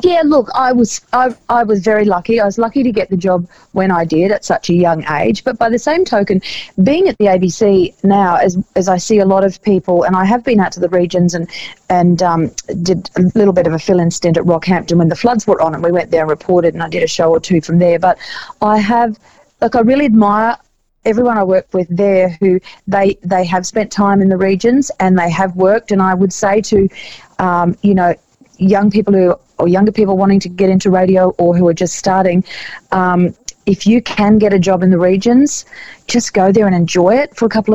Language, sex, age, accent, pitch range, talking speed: English, female, 40-59, Australian, 170-205 Hz, 240 wpm